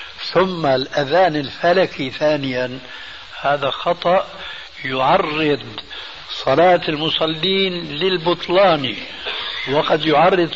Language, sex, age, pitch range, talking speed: Arabic, male, 60-79, 150-180 Hz, 70 wpm